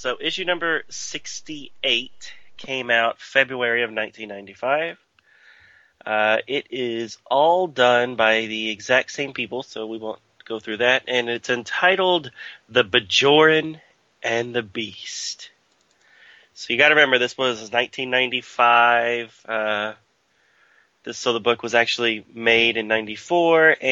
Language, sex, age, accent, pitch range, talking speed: English, male, 30-49, American, 110-125 Hz, 130 wpm